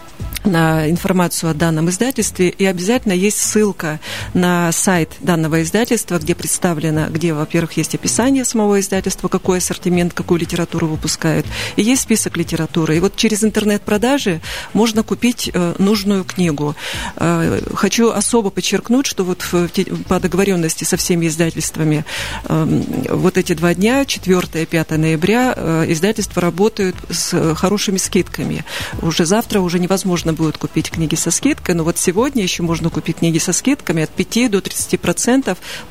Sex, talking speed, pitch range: female, 135 wpm, 165-205 Hz